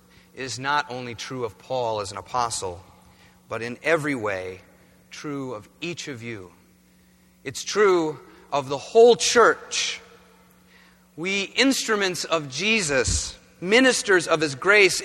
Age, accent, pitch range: 30-49, American, 125-180 Hz